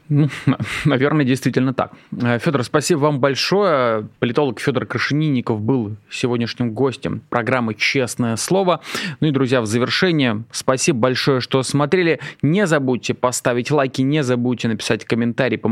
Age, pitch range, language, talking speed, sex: 20-39, 120-150 Hz, Russian, 135 wpm, male